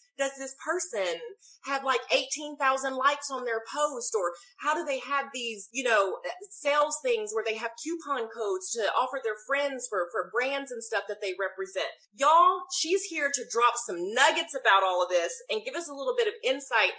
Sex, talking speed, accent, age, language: female, 200 wpm, American, 30-49, English